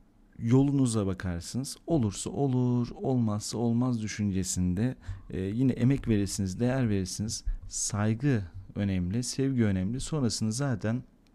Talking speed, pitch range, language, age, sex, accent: 100 wpm, 100-120 Hz, Turkish, 40-59, male, native